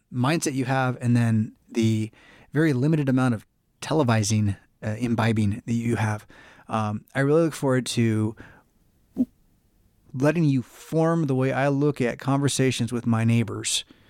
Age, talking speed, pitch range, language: 30-49, 145 wpm, 115-145 Hz, English